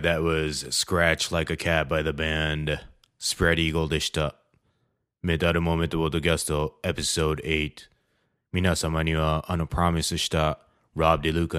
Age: 20-39